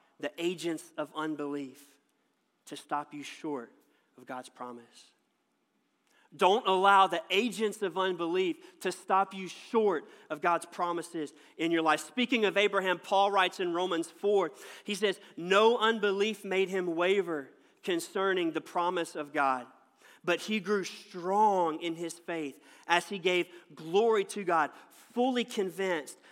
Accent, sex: American, male